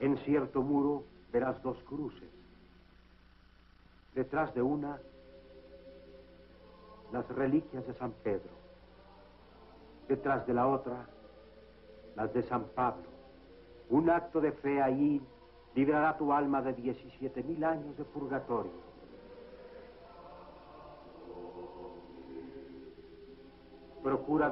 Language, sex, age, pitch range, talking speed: Spanish, male, 60-79, 120-145 Hz, 90 wpm